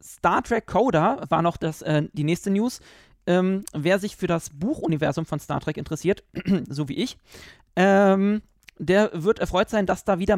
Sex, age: male, 40-59